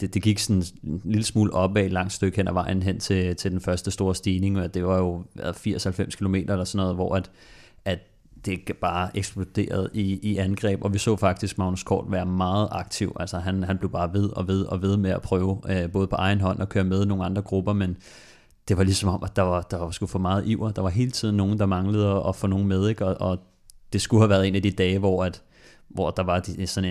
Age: 30-49